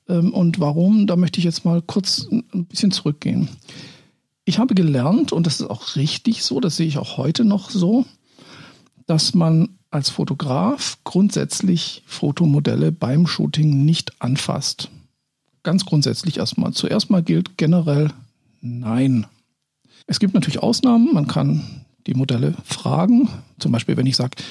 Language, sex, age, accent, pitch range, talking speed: German, male, 50-69, German, 145-190 Hz, 145 wpm